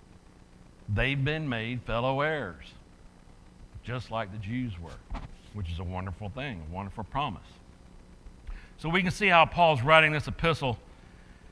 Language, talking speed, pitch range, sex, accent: English, 140 wpm, 90-145 Hz, male, American